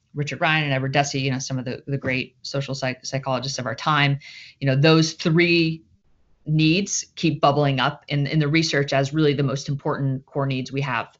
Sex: female